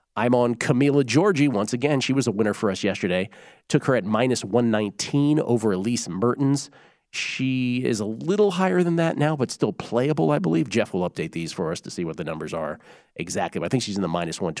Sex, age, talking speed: male, 40-59, 220 wpm